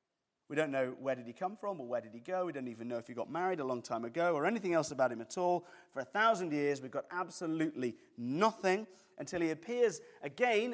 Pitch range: 120-175 Hz